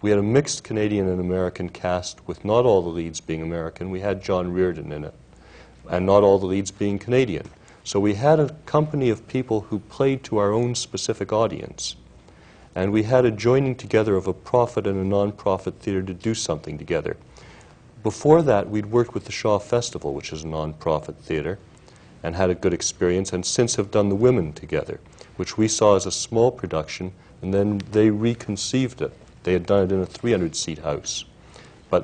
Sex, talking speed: male, 195 wpm